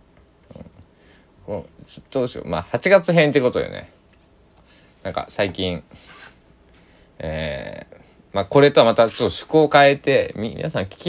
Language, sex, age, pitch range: Japanese, male, 20-39, 85-120 Hz